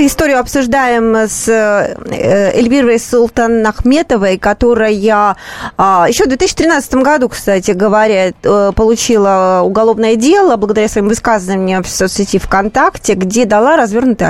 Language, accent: Russian, native